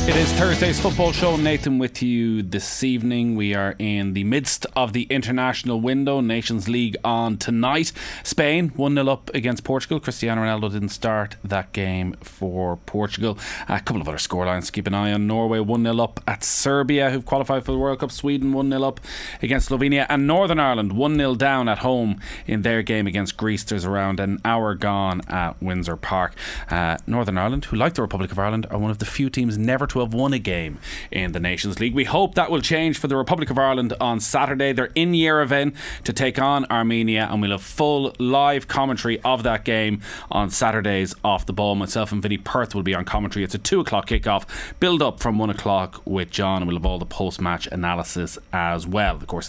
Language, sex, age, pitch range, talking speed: English, male, 30-49, 100-135 Hz, 205 wpm